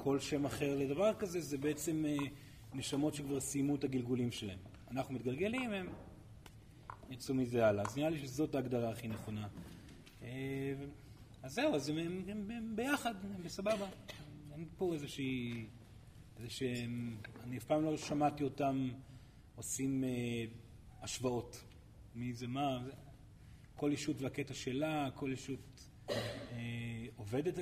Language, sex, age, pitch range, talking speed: Hebrew, male, 30-49, 115-150 Hz, 130 wpm